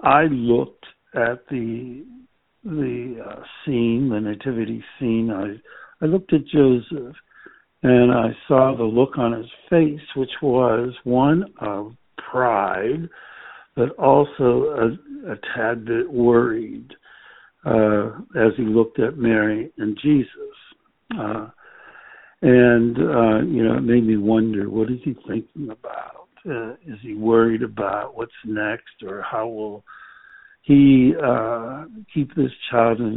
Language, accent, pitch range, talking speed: English, American, 110-140 Hz, 130 wpm